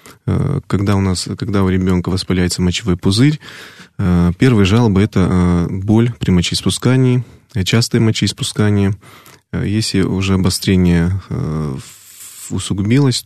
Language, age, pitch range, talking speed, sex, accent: Russian, 20-39, 90-120 Hz, 95 wpm, male, native